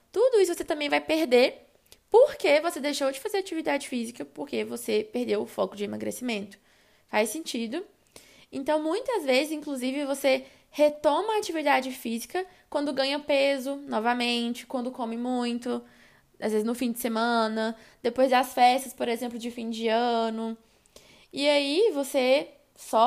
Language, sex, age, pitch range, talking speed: Portuguese, female, 20-39, 230-295 Hz, 150 wpm